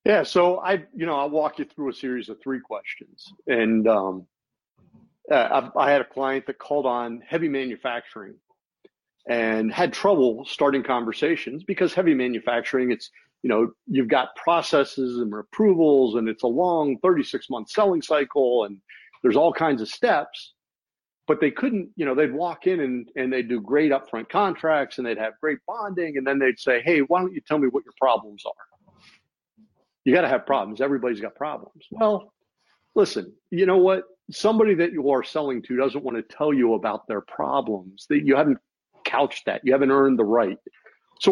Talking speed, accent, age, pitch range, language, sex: 185 wpm, American, 50-69, 125-190 Hz, English, male